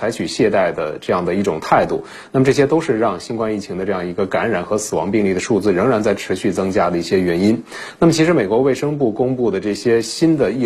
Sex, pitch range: male, 105-135 Hz